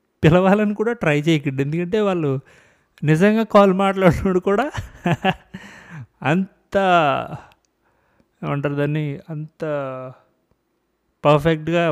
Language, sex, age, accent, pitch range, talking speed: Telugu, male, 30-49, native, 130-185 Hz, 75 wpm